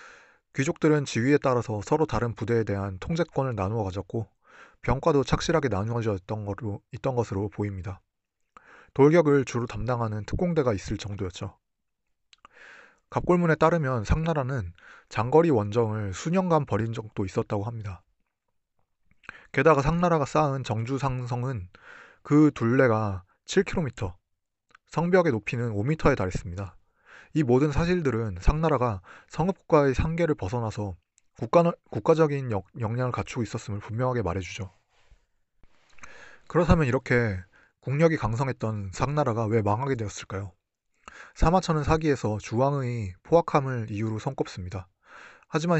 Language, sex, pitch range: Korean, male, 105-150 Hz